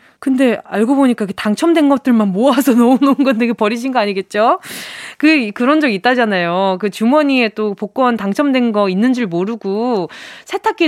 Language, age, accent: Korean, 20-39, native